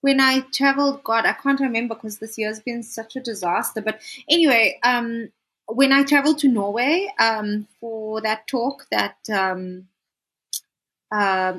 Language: English